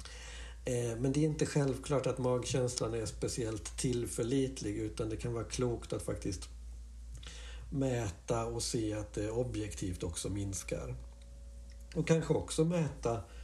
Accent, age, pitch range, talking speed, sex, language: Swedish, 60-79, 100-135 Hz, 130 wpm, male, English